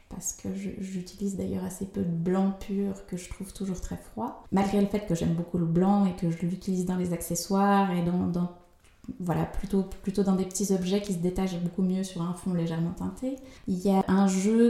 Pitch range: 185-210 Hz